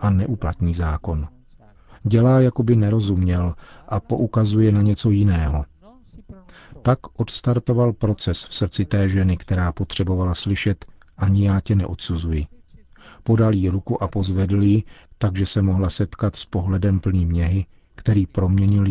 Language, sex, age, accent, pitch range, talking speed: Czech, male, 40-59, native, 90-110 Hz, 135 wpm